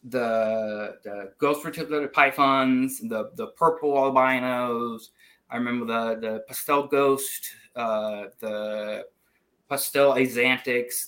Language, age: English, 20-39